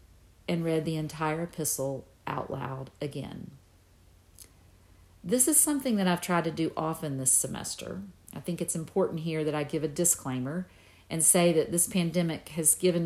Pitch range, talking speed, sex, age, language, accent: 140-195 Hz, 165 wpm, female, 50-69, English, American